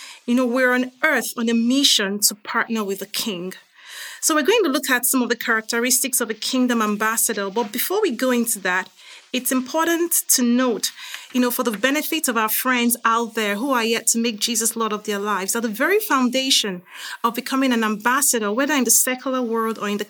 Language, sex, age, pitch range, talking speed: English, female, 30-49, 215-260 Hz, 220 wpm